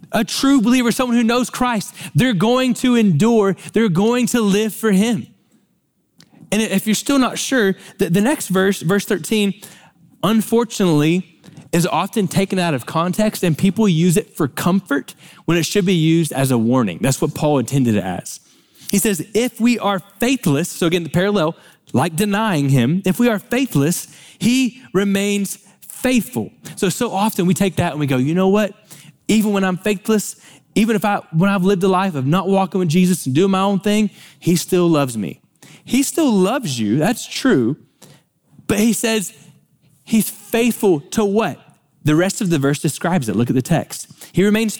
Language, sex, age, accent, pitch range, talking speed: English, male, 20-39, American, 170-220 Hz, 185 wpm